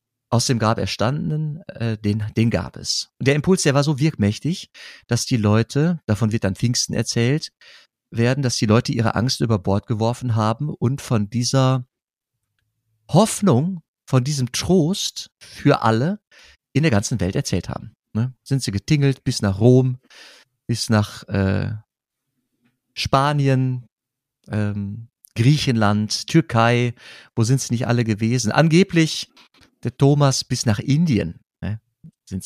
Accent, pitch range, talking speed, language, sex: German, 110-140 Hz, 140 wpm, German, male